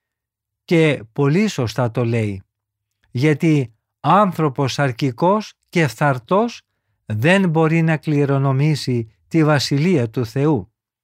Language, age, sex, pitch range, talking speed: Greek, 50-69, male, 130-180 Hz, 100 wpm